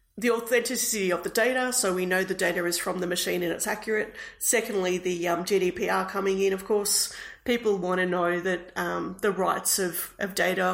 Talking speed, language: 200 wpm, English